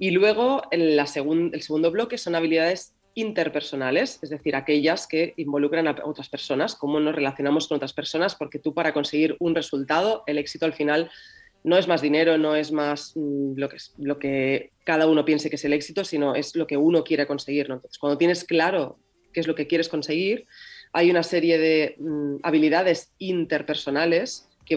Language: Spanish